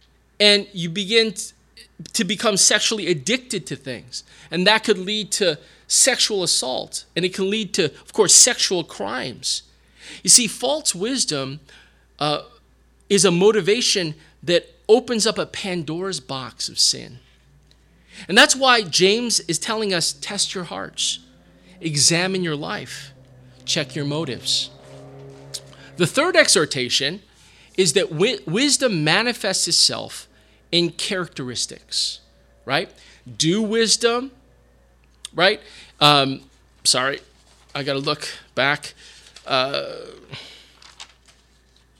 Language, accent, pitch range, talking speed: English, American, 125-210 Hz, 115 wpm